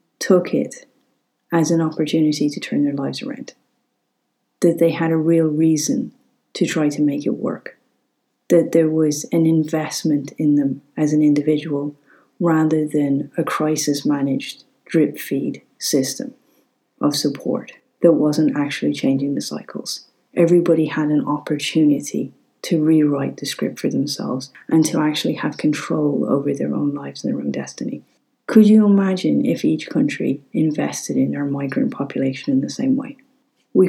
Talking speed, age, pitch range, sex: 150 wpm, 30-49, 145-175 Hz, female